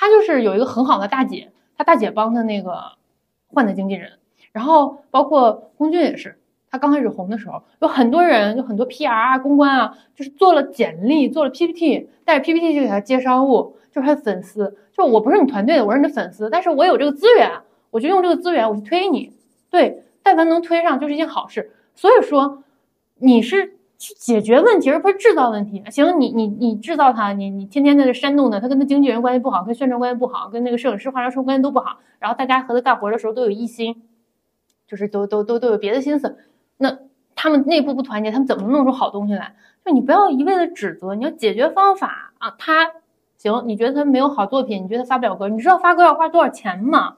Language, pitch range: Chinese, 230-325 Hz